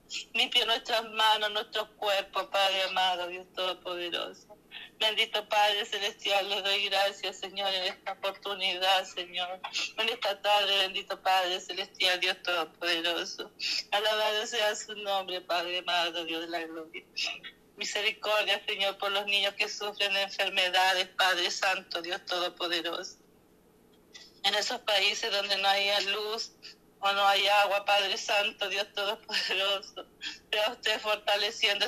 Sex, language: female, Spanish